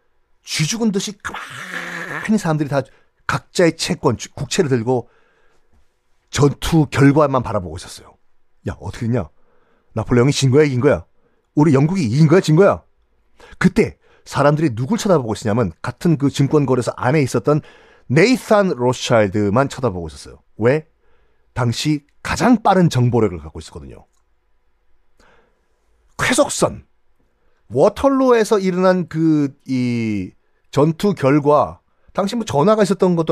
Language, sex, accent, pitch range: Korean, male, native, 120-180 Hz